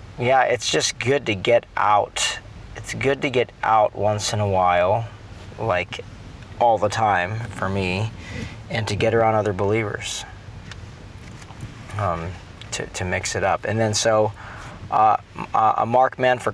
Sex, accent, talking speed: male, American, 150 wpm